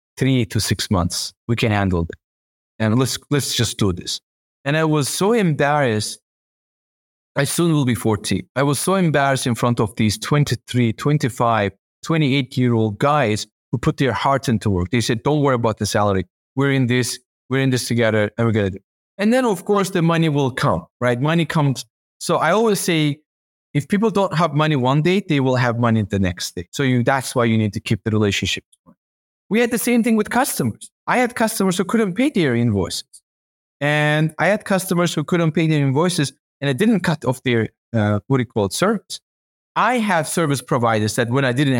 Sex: male